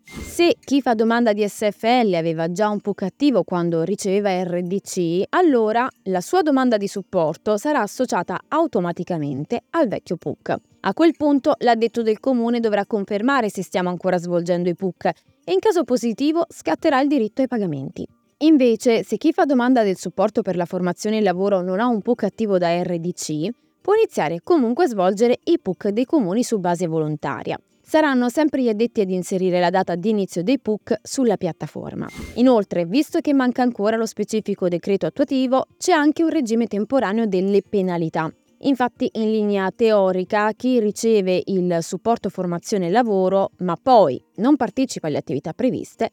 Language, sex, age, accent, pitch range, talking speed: Italian, female, 20-39, native, 185-250 Hz, 170 wpm